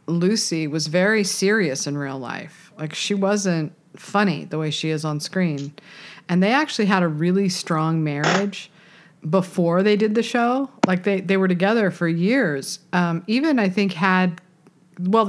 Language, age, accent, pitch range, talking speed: English, 50-69, American, 160-195 Hz, 170 wpm